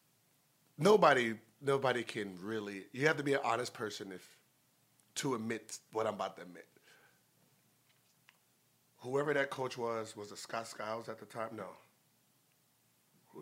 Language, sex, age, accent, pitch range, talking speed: English, male, 30-49, American, 115-145 Hz, 145 wpm